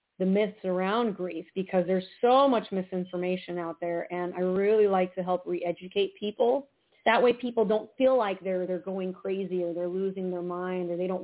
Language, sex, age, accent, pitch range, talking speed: English, female, 40-59, American, 175-205 Hz, 200 wpm